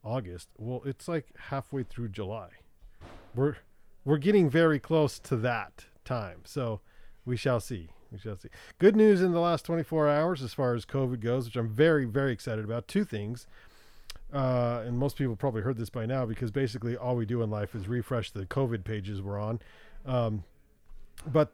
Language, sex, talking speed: English, male, 185 wpm